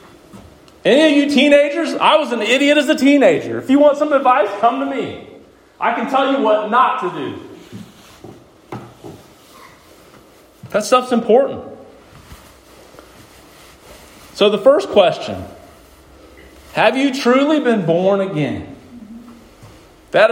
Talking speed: 120 wpm